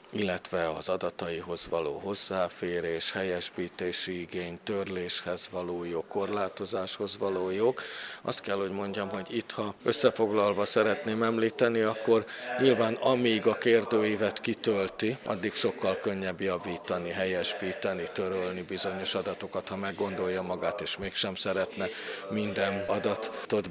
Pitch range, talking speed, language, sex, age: 95-110 Hz, 115 wpm, Hungarian, male, 50-69